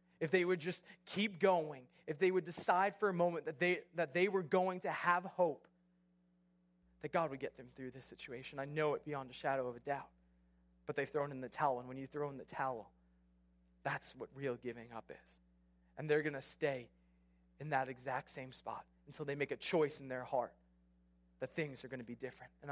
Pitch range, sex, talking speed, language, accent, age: 120-185 Hz, male, 215 wpm, English, American, 20-39